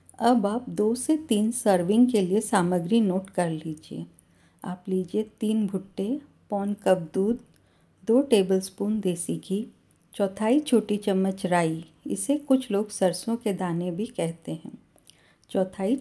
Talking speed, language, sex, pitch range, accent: 140 wpm, Hindi, female, 185-235 Hz, native